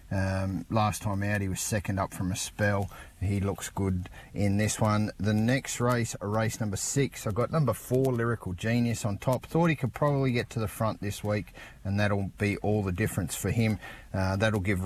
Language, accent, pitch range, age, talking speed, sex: English, Australian, 100-115 Hz, 30-49, 210 wpm, male